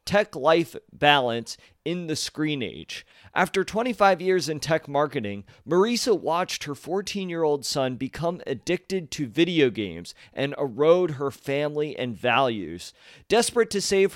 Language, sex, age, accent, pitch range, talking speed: English, male, 40-59, American, 130-185 Hz, 135 wpm